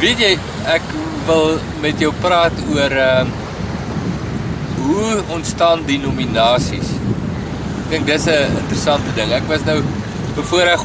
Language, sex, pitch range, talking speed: English, male, 135-165 Hz, 135 wpm